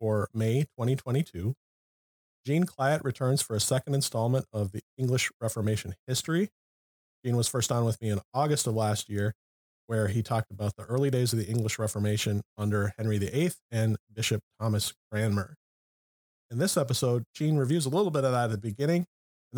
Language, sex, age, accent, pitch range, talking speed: English, male, 30-49, American, 105-135 Hz, 180 wpm